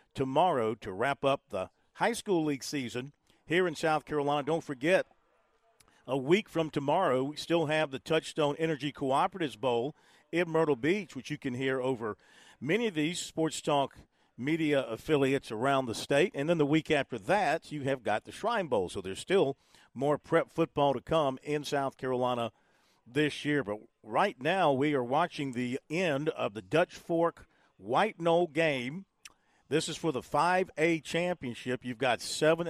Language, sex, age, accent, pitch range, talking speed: English, male, 50-69, American, 130-165 Hz, 175 wpm